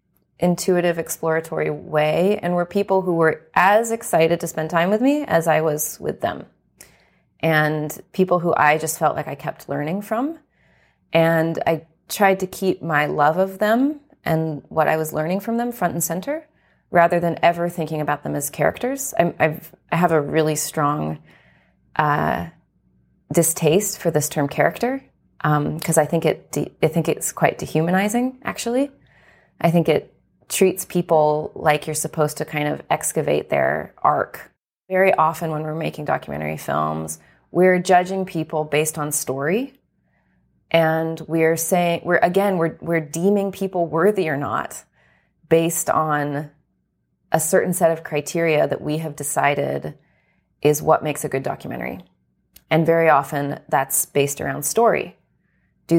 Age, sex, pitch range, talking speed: 30-49, female, 150-180 Hz, 150 wpm